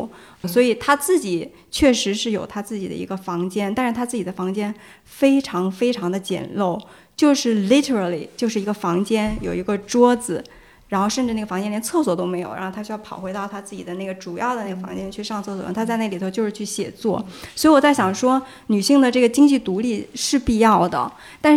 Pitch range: 200-255 Hz